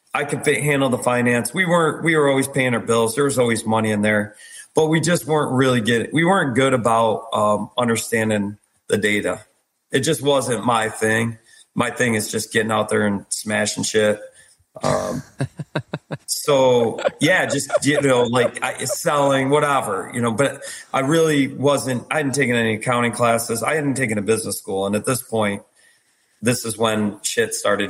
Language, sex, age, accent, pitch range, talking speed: English, male, 40-59, American, 105-135 Hz, 180 wpm